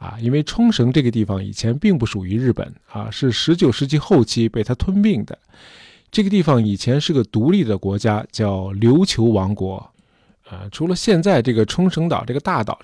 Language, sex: Chinese, male